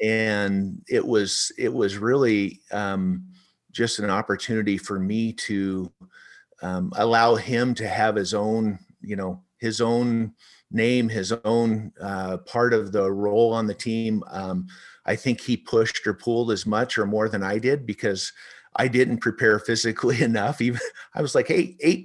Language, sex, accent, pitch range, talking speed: English, male, American, 105-130 Hz, 165 wpm